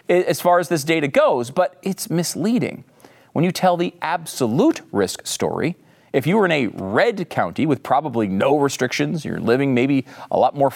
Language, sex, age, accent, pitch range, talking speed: English, male, 40-59, American, 130-195 Hz, 185 wpm